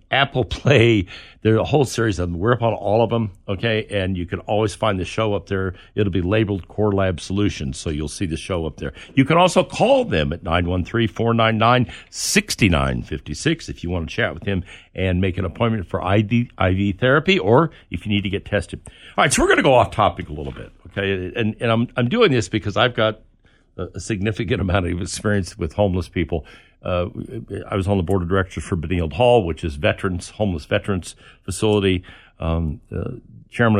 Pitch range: 90-110 Hz